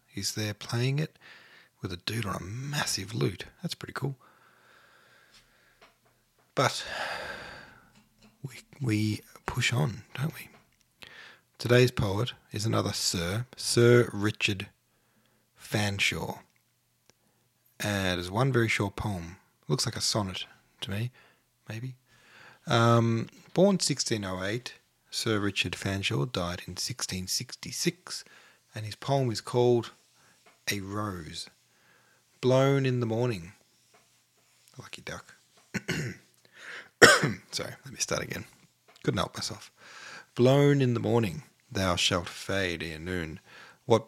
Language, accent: English, Australian